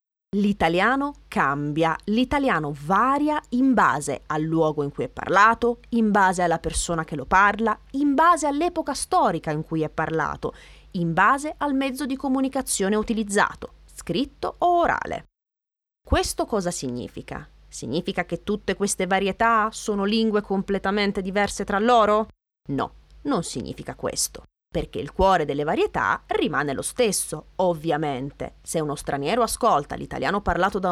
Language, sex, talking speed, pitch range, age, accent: Italian, female, 140 wpm, 160-220 Hz, 20-39, native